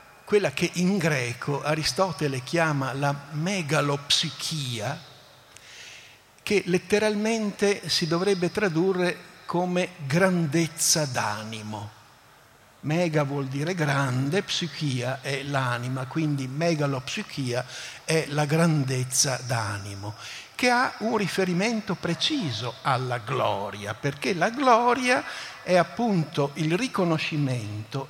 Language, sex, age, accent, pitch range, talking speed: Italian, male, 60-79, native, 130-180 Hz, 90 wpm